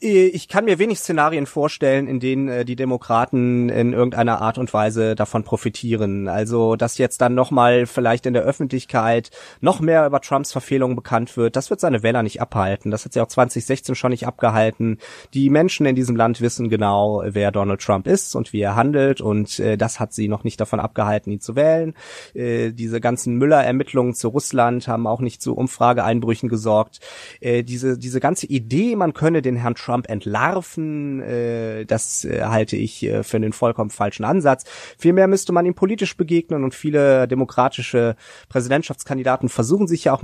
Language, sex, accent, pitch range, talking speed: German, male, German, 115-140 Hz, 175 wpm